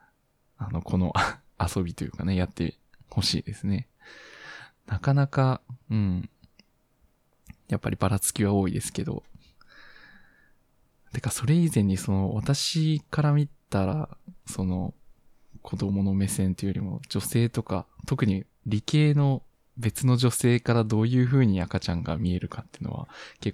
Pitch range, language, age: 95-125 Hz, Japanese, 20-39